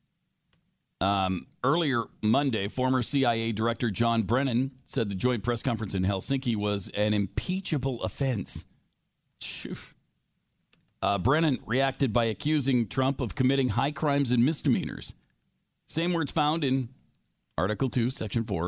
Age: 50-69